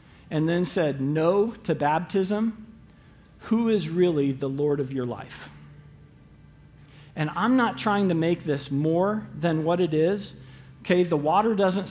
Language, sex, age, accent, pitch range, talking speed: English, male, 50-69, American, 140-190 Hz, 150 wpm